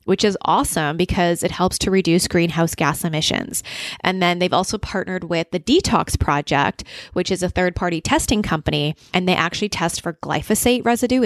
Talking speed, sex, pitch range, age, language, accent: 175 wpm, female, 165-205 Hz, 20-39, English, American